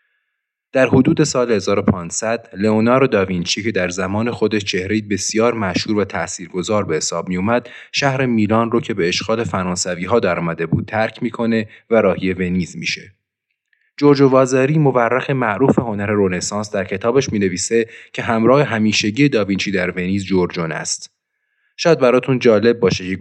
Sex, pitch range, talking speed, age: male, 95-120 Hz, 145 wpm, 30-49